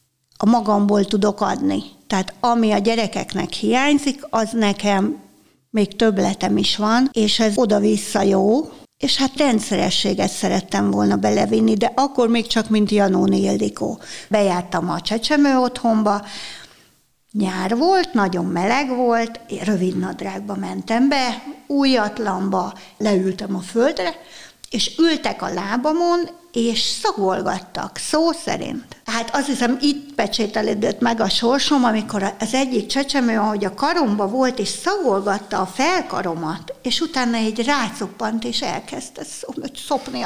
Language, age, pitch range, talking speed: Hungarian, 60-79, 200-250 Hz, 125 wpm